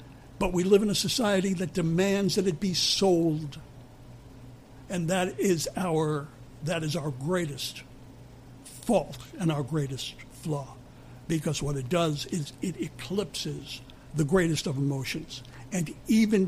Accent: American